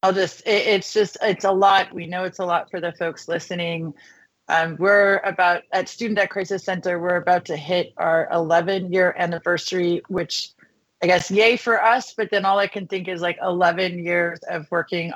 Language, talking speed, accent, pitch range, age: English, 200 wpm, American, 165-190 Hz, 30-49